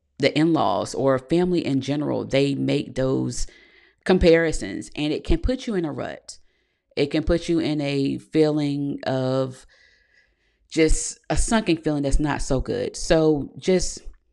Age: 30-49